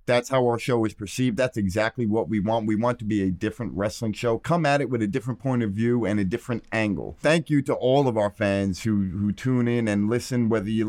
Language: English